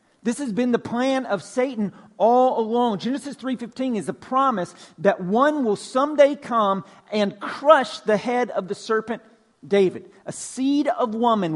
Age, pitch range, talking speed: 50-69, 195-250 Hz, 160 wpm